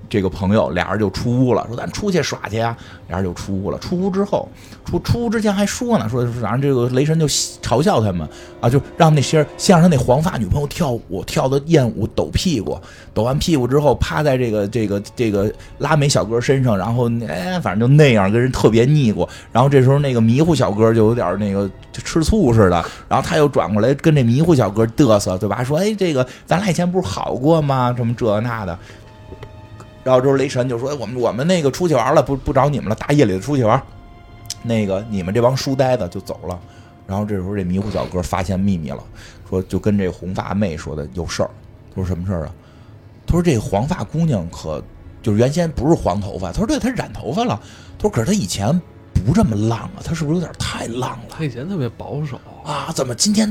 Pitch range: 100-150 Hz